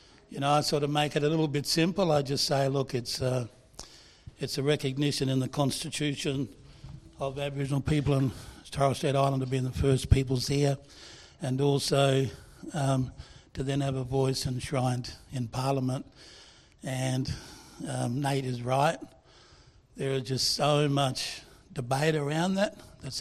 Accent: Australian